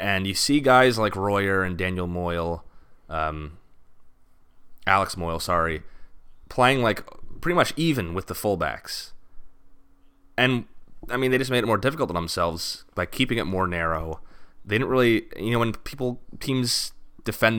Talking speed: 155 wpm